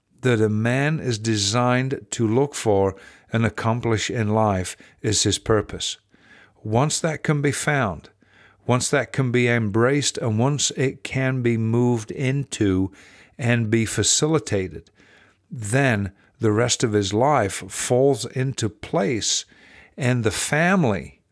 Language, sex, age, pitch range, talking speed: English, male, 50-69, 105-130 Hz, 130 wpm